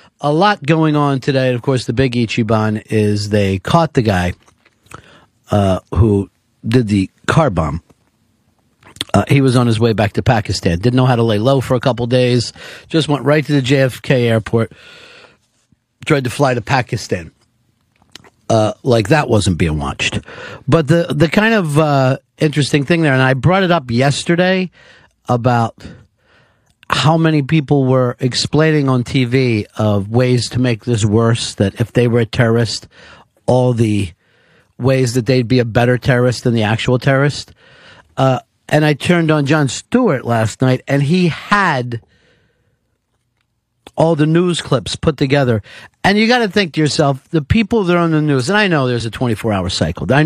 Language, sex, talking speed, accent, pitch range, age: English, male, 175 wpm, American, 115-150 Hz, 50-69